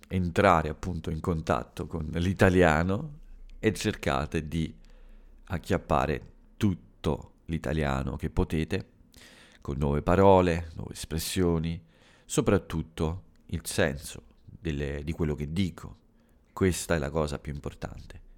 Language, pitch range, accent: Italian, 80-95 Hz, native